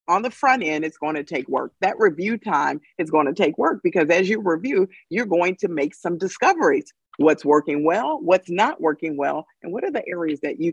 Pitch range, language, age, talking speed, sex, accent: 160-245 Hz, English, 50-69, 230 wpm, female, American